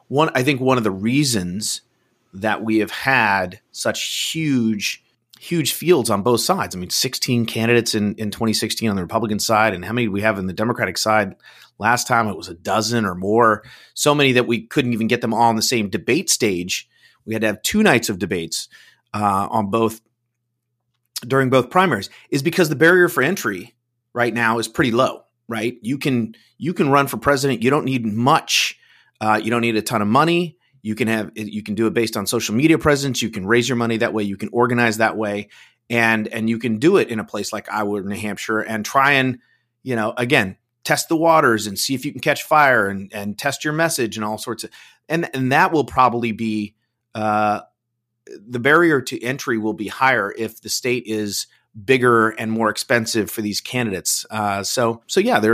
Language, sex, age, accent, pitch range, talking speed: English, male, 30-49, American, 110-125 Hz, 210 wpm